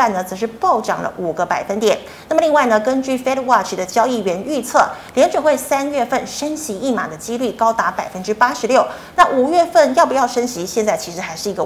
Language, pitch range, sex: Chinese, 205-265 Hz, female